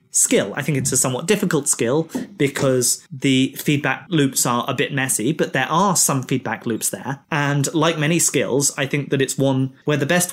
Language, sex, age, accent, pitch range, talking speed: English, male, 20-39, British, 130-155 Hz, 205 wpm